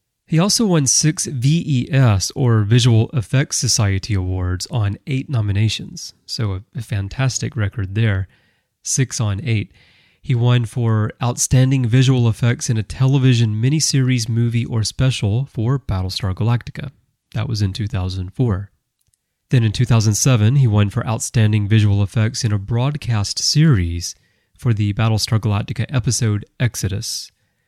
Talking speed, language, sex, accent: 130 wpm, English, male, American